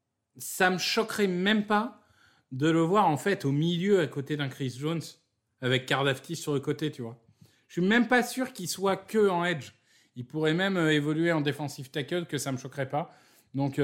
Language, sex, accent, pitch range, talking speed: French, male, French, 135-170 Hz, 205 wpm